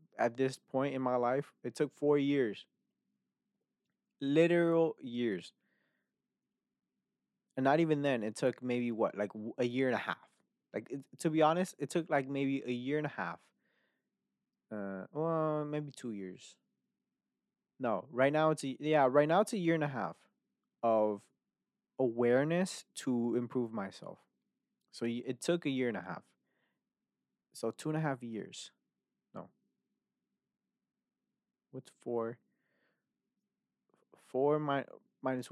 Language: English